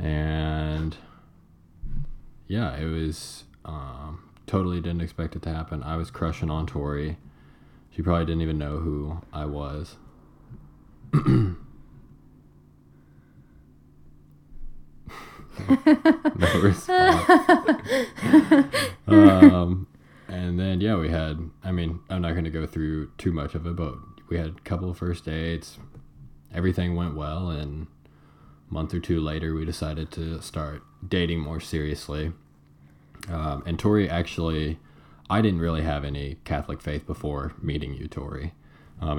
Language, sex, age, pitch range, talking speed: English, male, 20-39, 75-85 Hz, 130 wpm